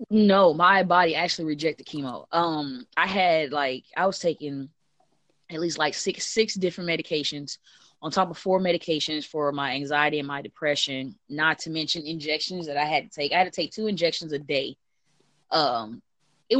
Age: 20-39